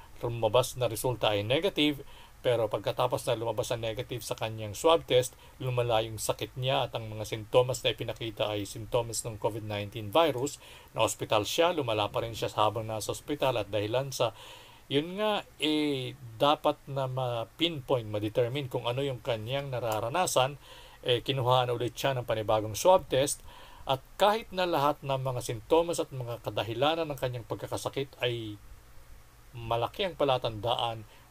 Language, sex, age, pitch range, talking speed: Filipino, male, 50-69, 110-135 Hz, 155 wpm